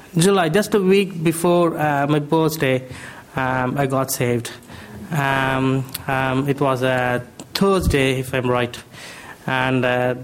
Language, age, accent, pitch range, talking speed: English, 20-39, Indian, 130-160 Hz, 135 wpm